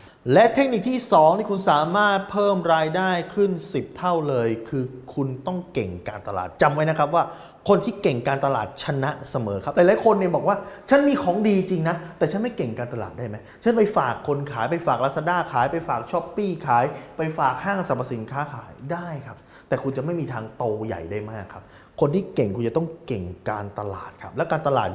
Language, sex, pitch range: Thai, male, 120-180 Hz